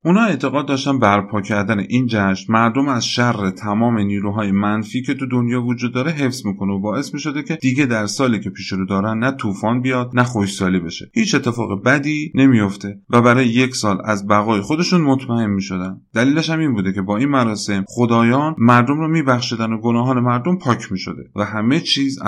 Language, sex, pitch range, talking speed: Persian, male, 100-135 Hz, 190 wpm